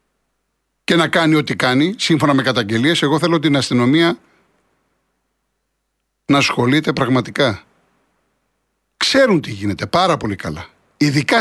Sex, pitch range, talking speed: male, 125-185 Hz, 115 wpm